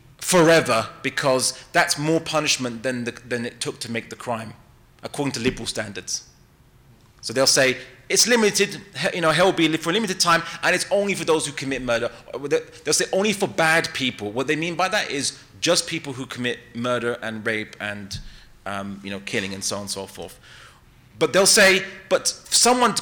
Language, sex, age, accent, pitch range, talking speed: English, male, 30-49, British, 120-185 Hz, 195 wpm